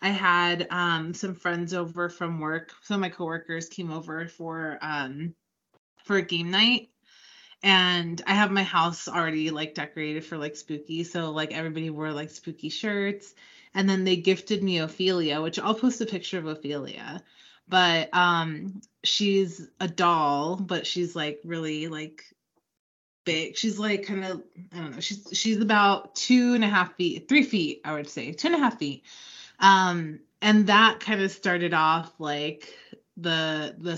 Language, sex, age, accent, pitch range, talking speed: English, female, 20-39, American, 165-200 Hz, 170 wpm